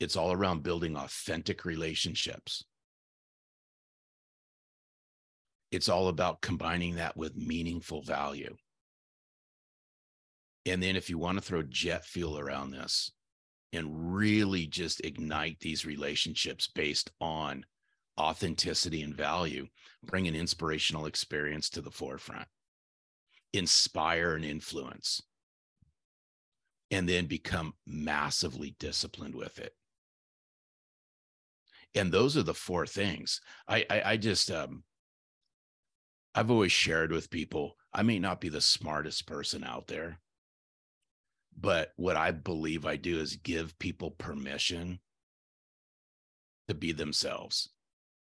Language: English